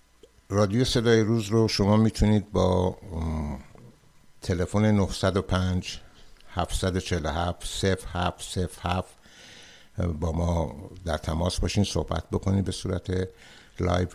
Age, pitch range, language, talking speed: 60-79, 85-100 Hz, Persian, 80 wpm